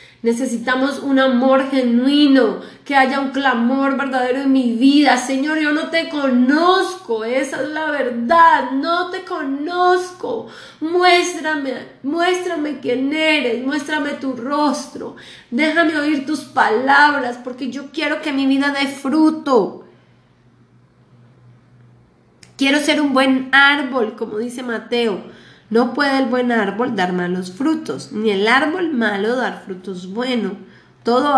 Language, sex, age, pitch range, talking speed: Spanish, female, 20-39, 220-275 Hz, 130 wpm